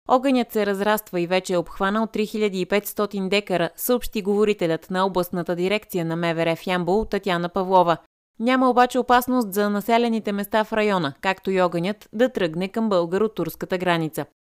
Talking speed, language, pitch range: 145 wpm, Bulgarian, 180-230 Hz